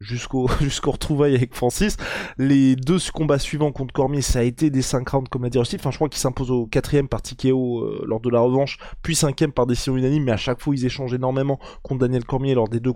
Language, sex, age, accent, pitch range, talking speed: French, male, 20-39, French, 130-155 Hz, 245 wpm